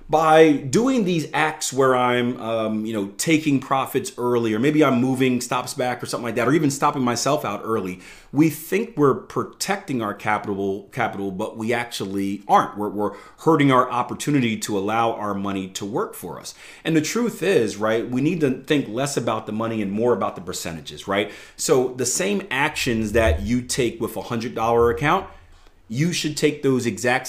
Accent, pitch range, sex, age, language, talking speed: American, 115-155 Hz, male, 30-49, English, 195 wpm